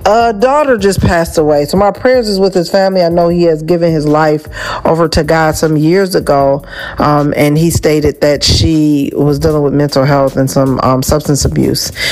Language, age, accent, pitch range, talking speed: English, 40-59, American, 145-165 Hz, 205 wpm